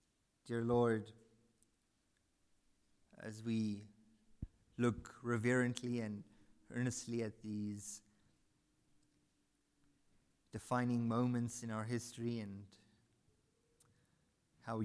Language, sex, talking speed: English, male, 70 wpm